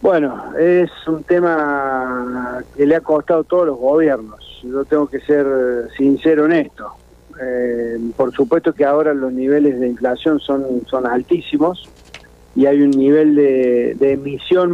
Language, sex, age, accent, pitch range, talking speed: Spanish, male, 40-59, Argentinian, 125-160 Hz, 155 wpm